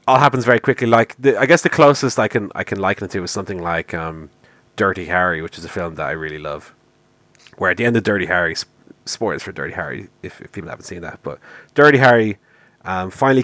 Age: 30-49